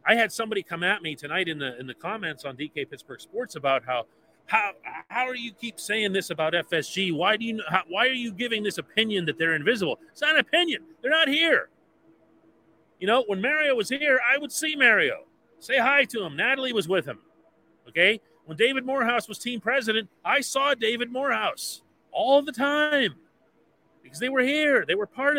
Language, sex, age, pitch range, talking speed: English, male, 40-59, 160-255 Hz, 205 wpm